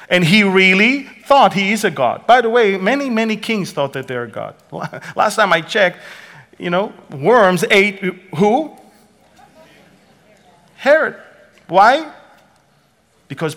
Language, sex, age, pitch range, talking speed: English, male, 40-59, 135-195 Hz, 140 wpm